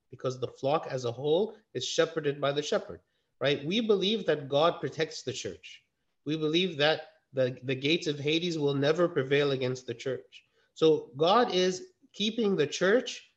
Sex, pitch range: male, 130-175 Hz